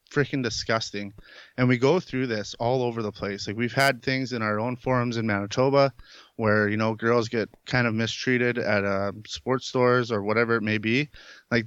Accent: American